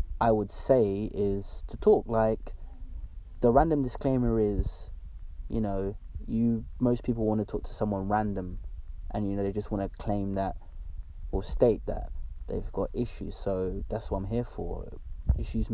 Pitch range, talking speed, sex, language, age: 85-110 Hz, 170 wpm, male, English, 20-39